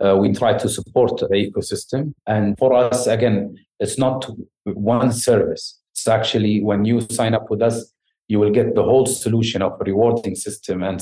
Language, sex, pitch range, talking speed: English, male, 105-135 Hz, 180 wpm